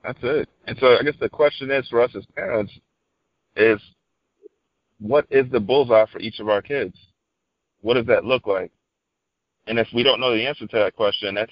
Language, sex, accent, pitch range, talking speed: English, male, American, 105-130 Hz, 205 wpm